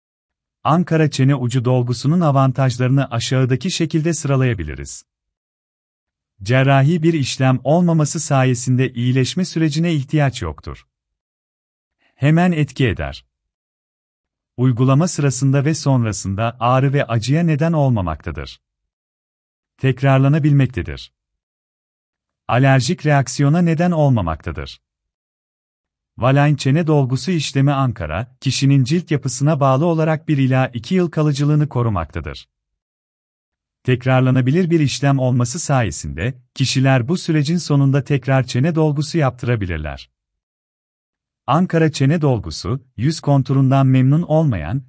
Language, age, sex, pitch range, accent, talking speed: Turkish, 40-59, male, 90-150 Hz, native, 95 wpm